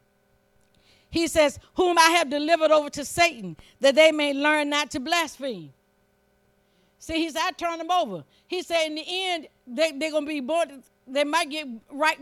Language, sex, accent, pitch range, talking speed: English, female, American, 190-320 Hz, 185 wpm